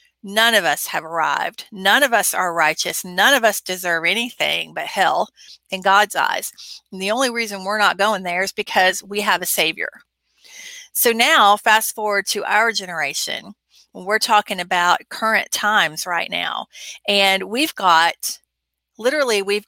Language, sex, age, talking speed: English, female, 40-59, 165 wpm